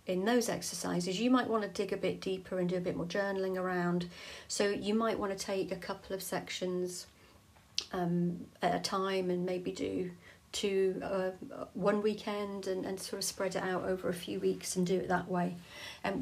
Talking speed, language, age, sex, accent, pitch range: 205 wpm, English, 40-59, female, British, 185-215 Hz